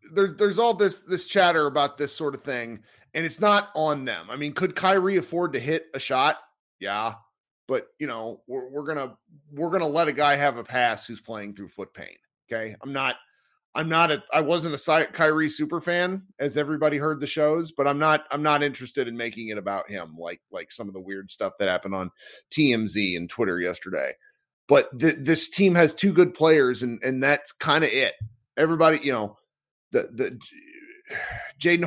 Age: 30-49